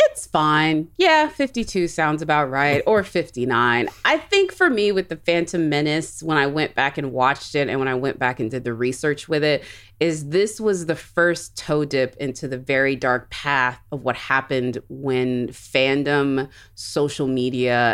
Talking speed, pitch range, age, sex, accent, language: 180 wpm, 130-160 Hz, 30-49, female, American, English